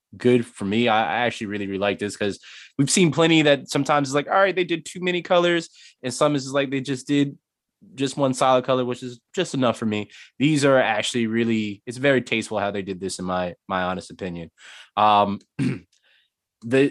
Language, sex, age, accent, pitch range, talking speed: Finnish, male, 20-39, American, 100-125 Hz, 210 wpm